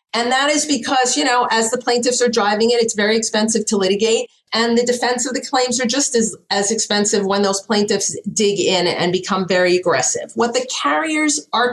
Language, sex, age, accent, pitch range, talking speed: English, female, 40-59, American, 180-225 Hz, 210 wpm